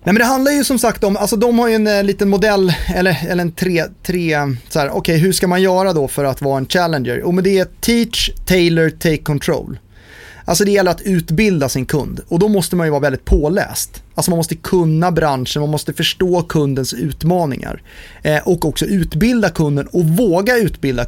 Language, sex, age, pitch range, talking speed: Swedish, male, 30-49, 135-185 Hz, 210 wpm